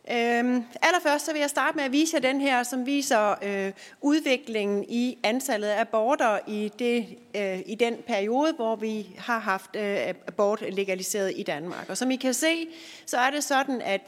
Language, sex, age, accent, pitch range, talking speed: Danish, female, 30-49, native, 200-265 Hz, 190 wpm